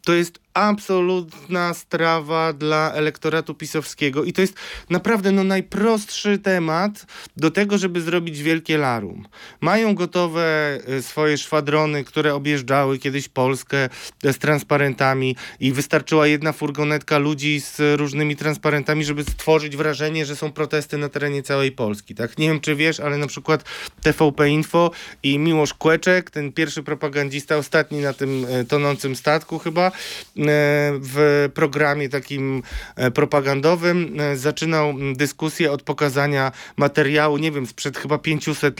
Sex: male